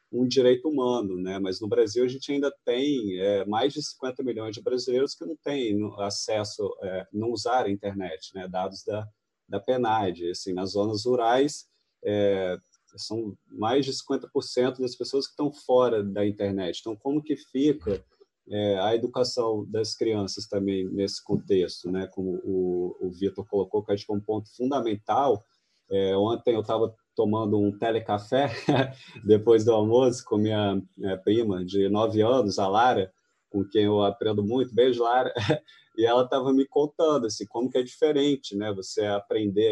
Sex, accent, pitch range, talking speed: male, Brazilian, 100-125 Hz, 170 wpm